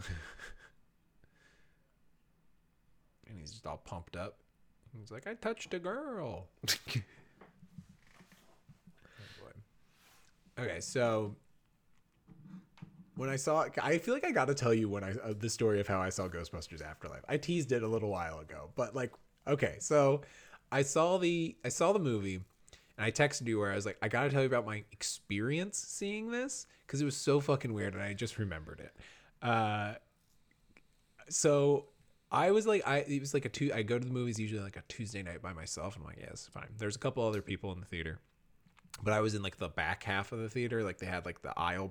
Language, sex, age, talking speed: English, male, 20-39, 195 wpm